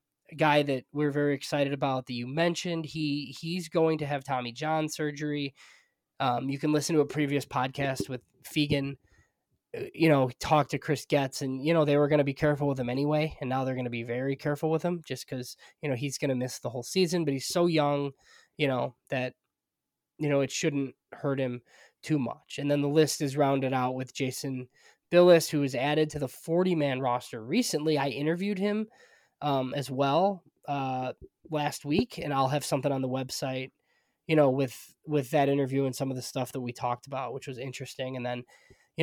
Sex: male